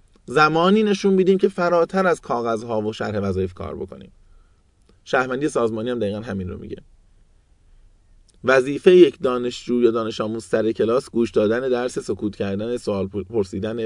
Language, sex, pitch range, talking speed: Persian, male, 95-140 Hz, 145 wpm